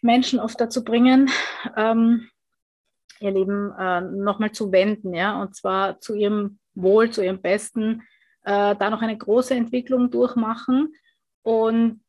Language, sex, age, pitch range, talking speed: German, female, 30-49, 195-230 Hz, 140 wpm